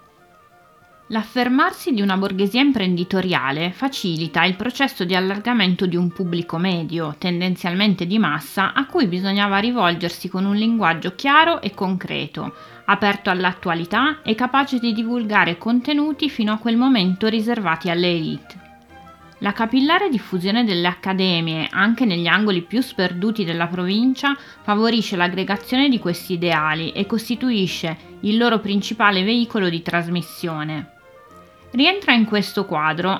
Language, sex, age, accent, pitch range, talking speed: Italian, female, 20-39, native, 175-235 Hz, 125 wpm